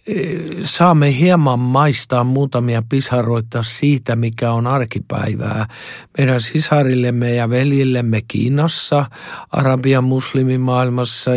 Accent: native